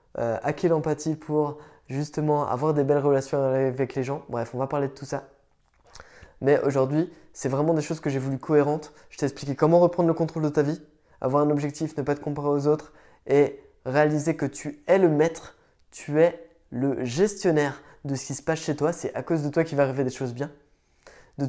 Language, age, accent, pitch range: French, 20-39, French, 140-165 Hz